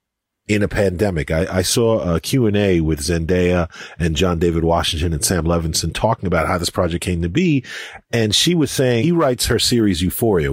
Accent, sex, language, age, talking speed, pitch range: American, male, English, 40-59, 205 wpm, 85-120 Hz